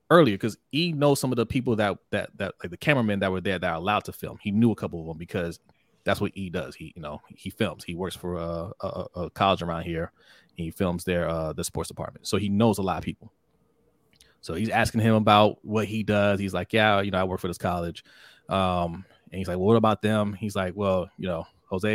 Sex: male